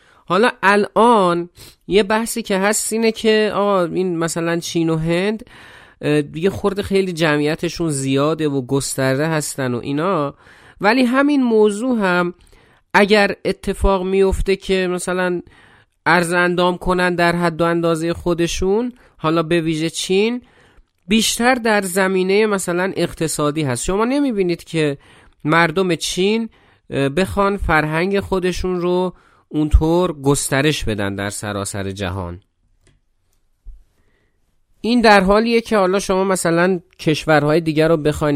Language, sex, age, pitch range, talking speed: Persian, male, 30-49, 130-190 Hz, 115 wpm